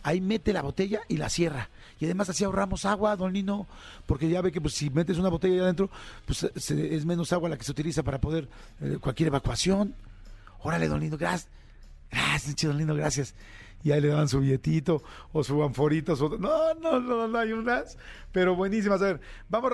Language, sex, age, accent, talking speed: Spanish, male, 40-59, Mexican, 210 wpm